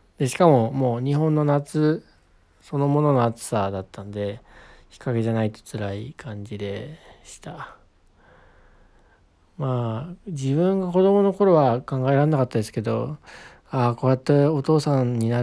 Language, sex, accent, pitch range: Japanese, male, native, 115-155 Hz